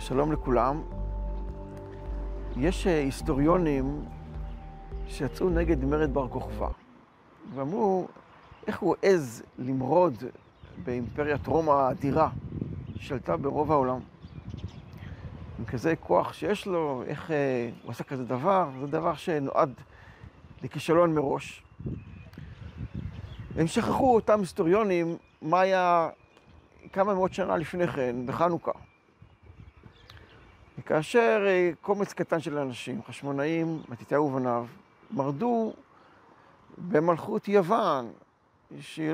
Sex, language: male, Hebrew